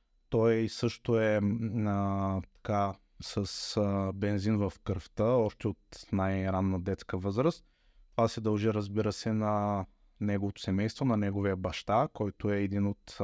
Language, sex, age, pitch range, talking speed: Bulgarian, male, 20-39, 100-110 Hz, 135 wpm